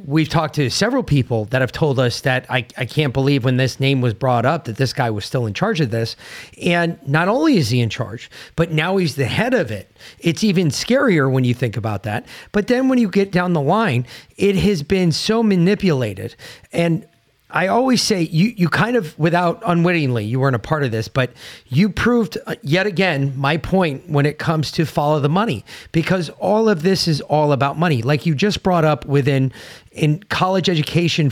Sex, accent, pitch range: male, American, 140-200 Hz